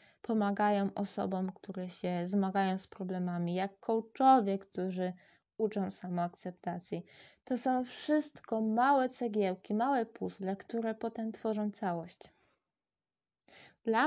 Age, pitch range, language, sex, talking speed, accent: 20-39, 190-225 Hz, Polish, female, 100 wpm, native